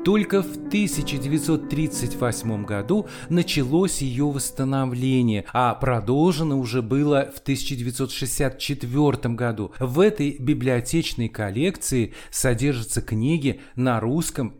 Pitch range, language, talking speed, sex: 120-155 Hz, Russian, 90 wpm, male